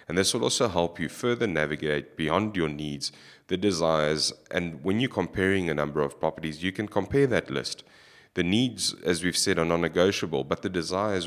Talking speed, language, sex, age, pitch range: 190 wpm, English, male, 30-49, 75-95 Hz